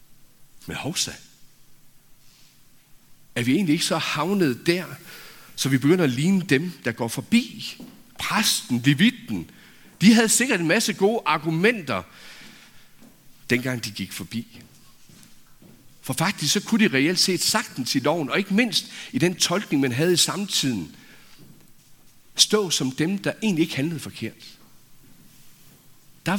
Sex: male